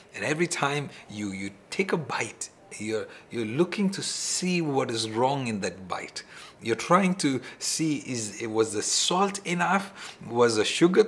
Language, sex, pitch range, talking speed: English, male, 115-185 Hz, 170 wpm